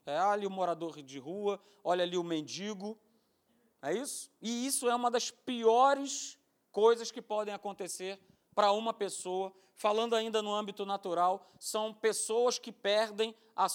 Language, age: Portuguese, 40-59